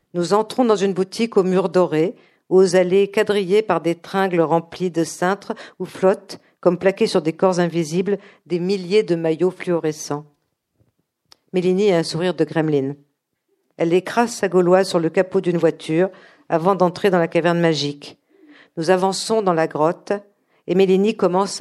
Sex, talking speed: female, 165 wpm